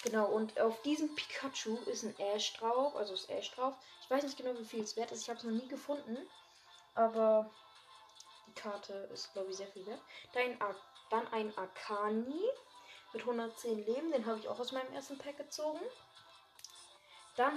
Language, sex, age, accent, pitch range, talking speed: German, female, 20-39, German, 215-275 Hz, 180 wpm